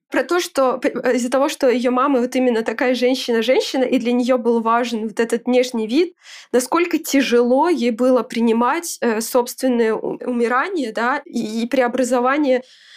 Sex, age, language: female, 20-39, Russian